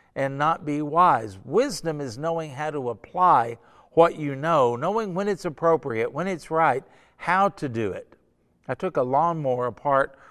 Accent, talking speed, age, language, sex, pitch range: American, 170 wpm, 50-69, English, male, 130-175 Hz